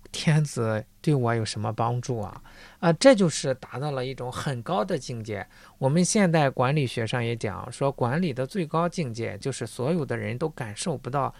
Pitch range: 120-180 Hz